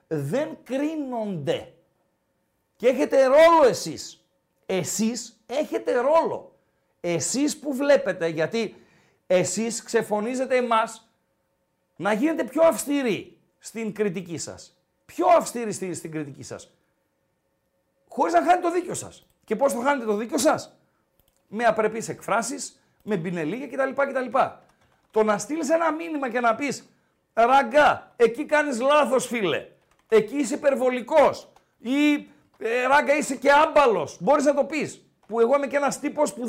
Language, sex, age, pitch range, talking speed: Greek, male, 50-69, 195-285 Hz, 135 wpm